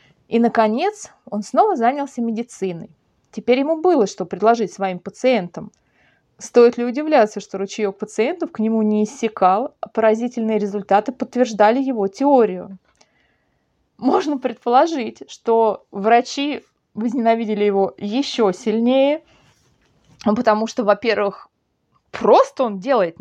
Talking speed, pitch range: 110 wpm, 210-275 Hz